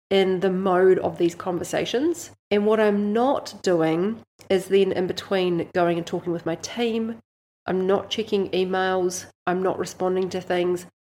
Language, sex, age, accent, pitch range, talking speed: English, female, 30-49, Australian, 180-215 Hz, 165 wpm